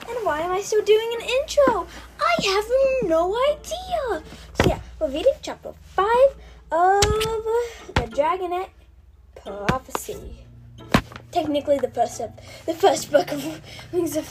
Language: English